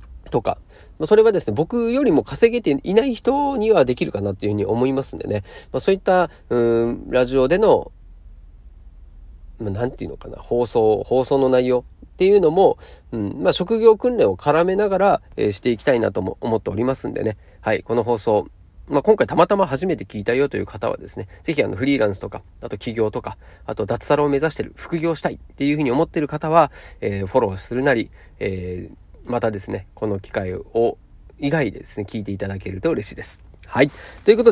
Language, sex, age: Japanese, male, 40-59